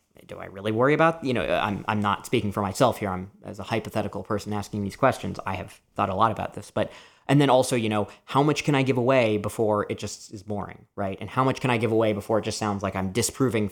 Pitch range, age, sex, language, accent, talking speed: 100-125 Hz, 20-39, male, English, American, 265 wpm